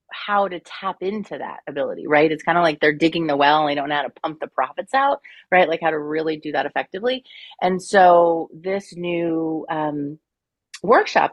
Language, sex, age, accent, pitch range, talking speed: English, female, 30-49, American, 160-205 Hz, 205 wpm